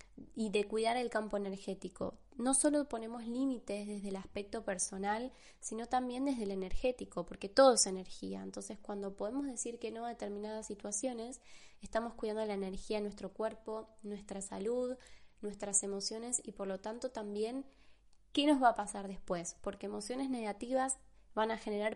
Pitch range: 200-230 Hz